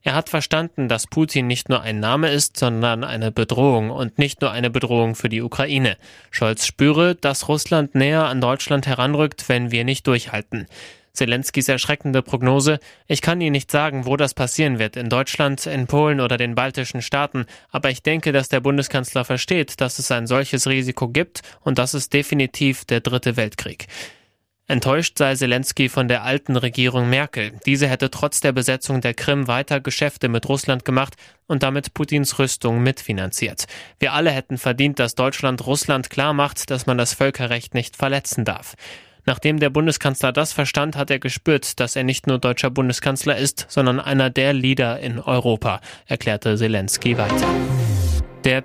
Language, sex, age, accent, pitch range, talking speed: German, male, 20-39, German, 120-140 Hz, 170 wpm